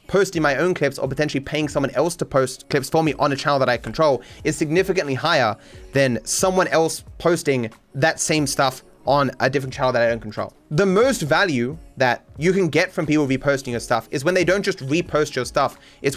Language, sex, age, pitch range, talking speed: English, male, 20-39, 130-175 Hz, 220 wpm